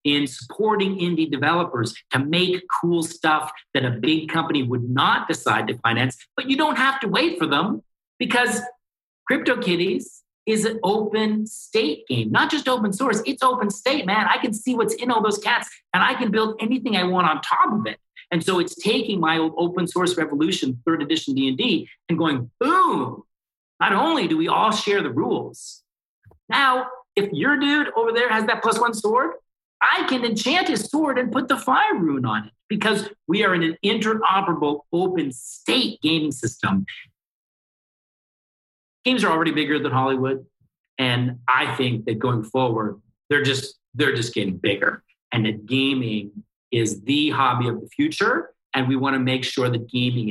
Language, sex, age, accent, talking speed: English, male, 40-59, American, 180 wpm